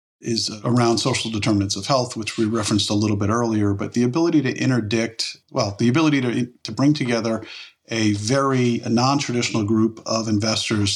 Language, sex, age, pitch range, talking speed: English, male, 40-59, 100-120 Hz, 175 wpm